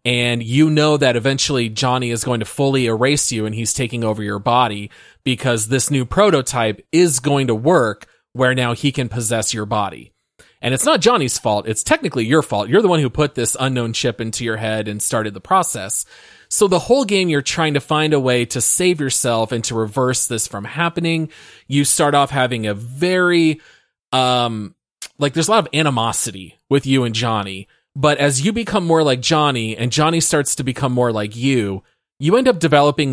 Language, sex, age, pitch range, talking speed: English, male, 30-49, 115-150 Hz, 205 wpm